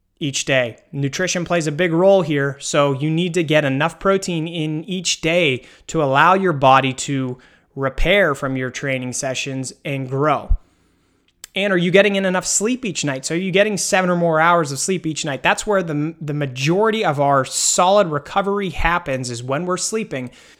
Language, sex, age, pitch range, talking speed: English, male, 30-49, 140-195 Hz, 190 wpm